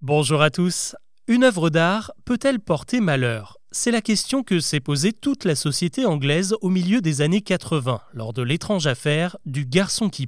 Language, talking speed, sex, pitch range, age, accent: French, 180 wpm, male, 135-200 Hz, 30-49, French